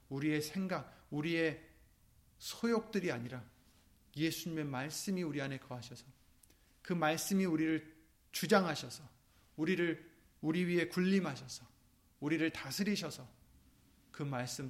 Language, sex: Korean, male